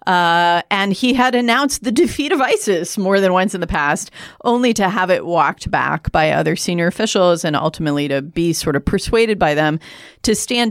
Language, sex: English, female